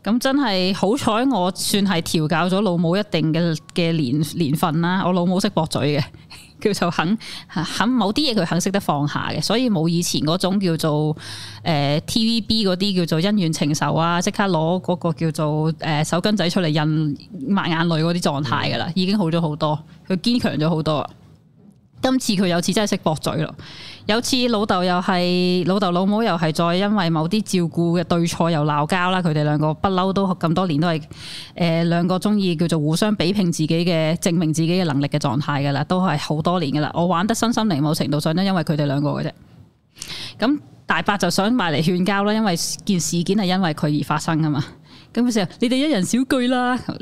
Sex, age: female, 20-39